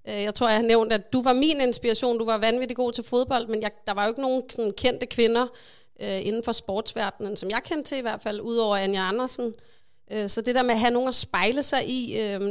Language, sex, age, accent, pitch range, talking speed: Danish, female, 30-49, native, 210-245 Hz, 255 wpm